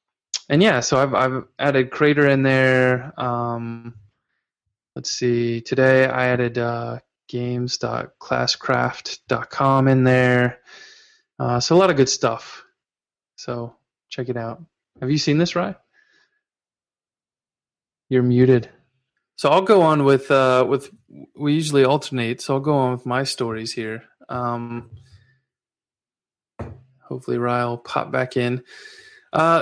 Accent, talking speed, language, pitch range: American, 130 wpm, English, 125-150 Hz